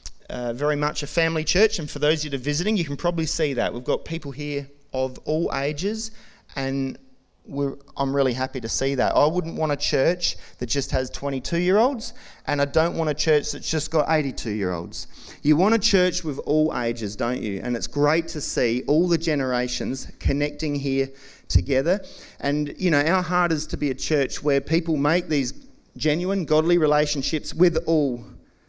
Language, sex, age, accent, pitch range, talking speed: English, male, 30-49, Australian, 130-155 Hz, 195 wpm